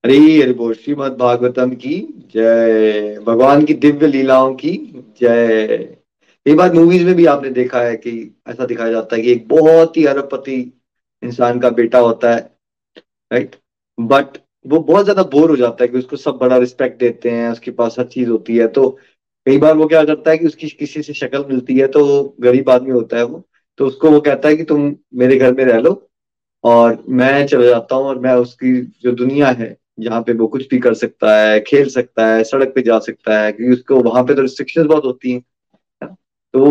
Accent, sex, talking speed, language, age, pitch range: native, male, 195 wpm, Hindi, 30-49, 125-155 Hz